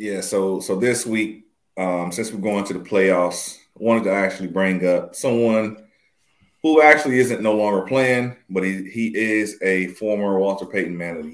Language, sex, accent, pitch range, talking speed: English, male, American, 90-115 Hz, 190 wpm